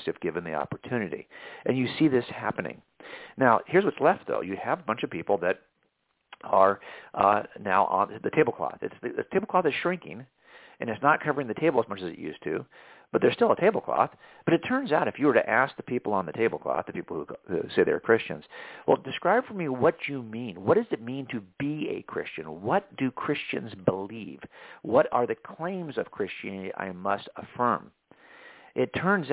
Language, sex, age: English, male, 50-69